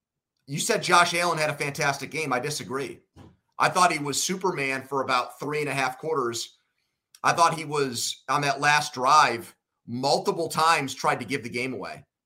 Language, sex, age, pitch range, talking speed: English, male, 30-49, 135-170 Hz, 185 wpm